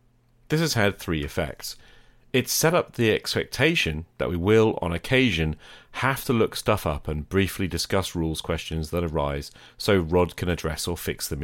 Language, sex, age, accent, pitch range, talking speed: English, male, 40-59, British, 80-120 Hz, 180 wpm